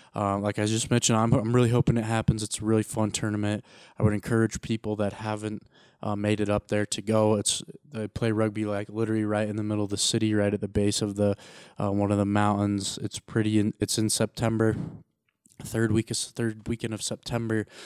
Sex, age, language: male, 20-39, English